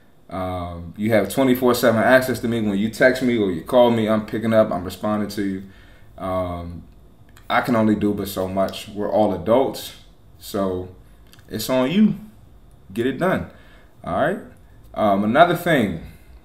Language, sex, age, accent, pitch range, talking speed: English, male, 20-39, American, 95-120 Hz, 165 wpm